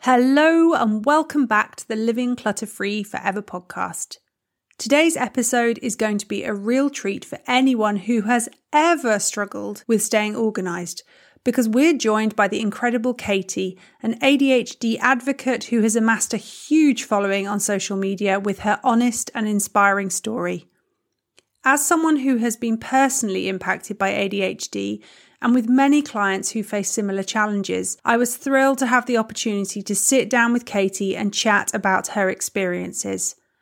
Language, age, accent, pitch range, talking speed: English, 30-49, British, 200-250 Hz, 155 wpm